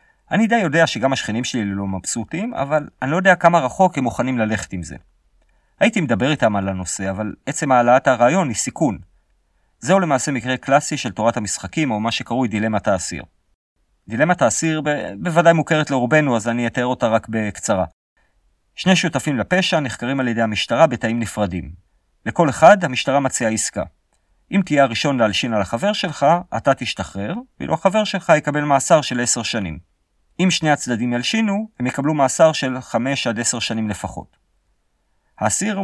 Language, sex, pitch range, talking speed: Hebrew, male, 105-155 Hz, 155 wpm